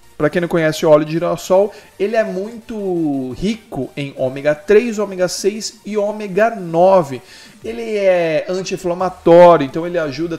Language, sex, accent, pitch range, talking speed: Portuguese, male, Brazilian, 145-200 Hz, 150 wpm